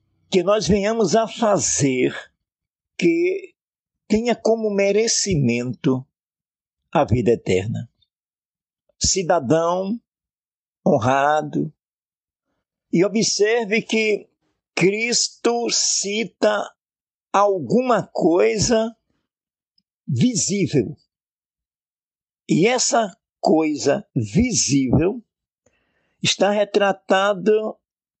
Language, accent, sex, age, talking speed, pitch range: Portuguese, Brazilian, male, 60-79, 60 wpm, 145-220 Hz